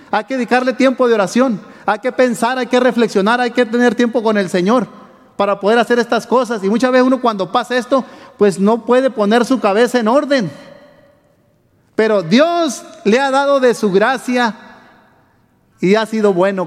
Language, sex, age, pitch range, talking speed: Spanish, male, 40-59, 215-265 Hz, 185 wpm